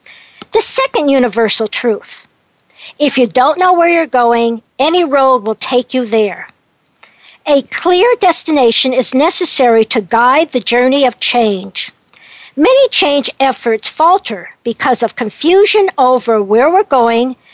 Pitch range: 235-325 Hz